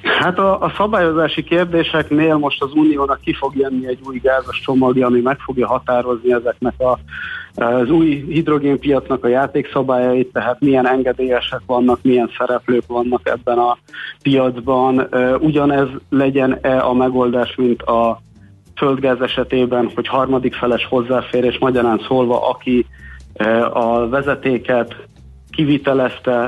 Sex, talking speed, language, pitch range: male, 120 wpm, Hungarian, 120-140 Hz